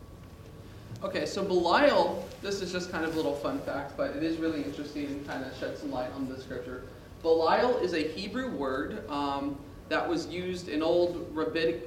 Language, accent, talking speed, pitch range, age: English, American, 190 wpm, 135-165 Hz, 30-49